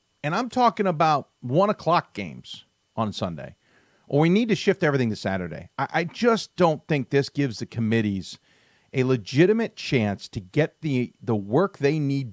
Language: English